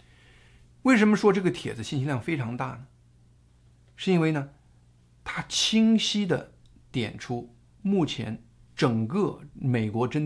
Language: Chinese